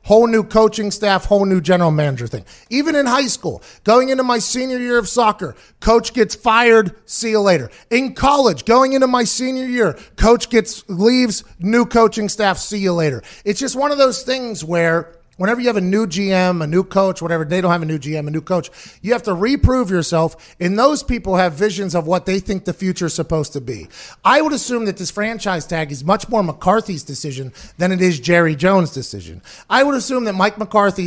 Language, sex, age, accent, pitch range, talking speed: English, male, 30-49, American, 170-220 Hz, 215 wpm